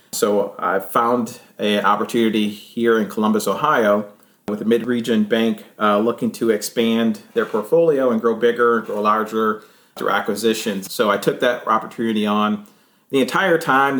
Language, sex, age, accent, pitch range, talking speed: English, male, 40-59, American, 105-120 Hz, 155 wpm